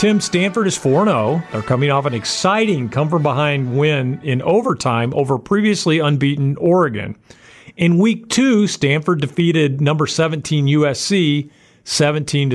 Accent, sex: American, male